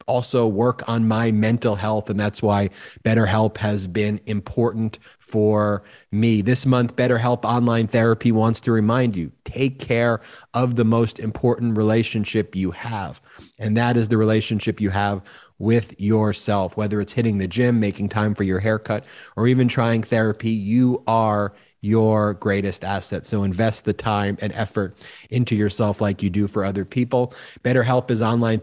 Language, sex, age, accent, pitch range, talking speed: English, male, 30-49, American, 105-120 Hz, 170 wpm